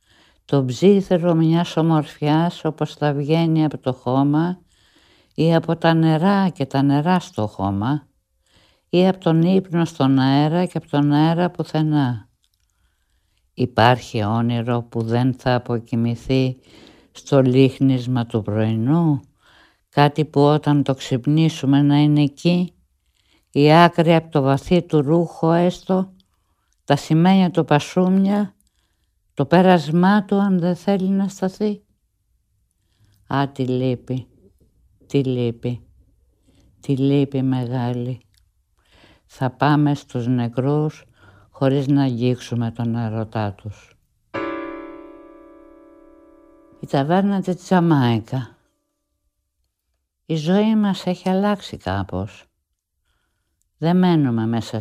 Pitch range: 115-170 Hz